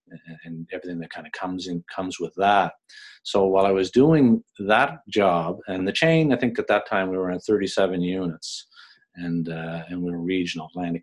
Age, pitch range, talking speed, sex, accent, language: 40-59, 90-110 Hz, 200 wpm, male, American, English